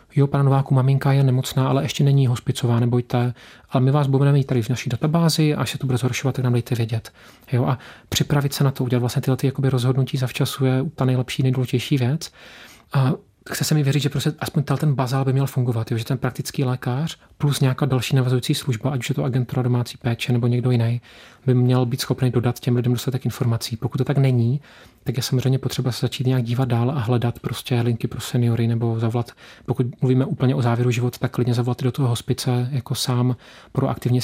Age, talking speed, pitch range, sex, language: 30-49, 220 wpm, 125-135 Hz, male, Czech